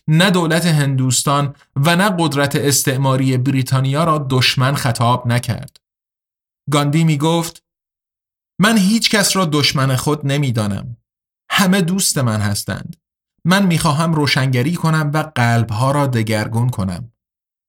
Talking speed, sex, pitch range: 125 wpm, male, 130-165 Hz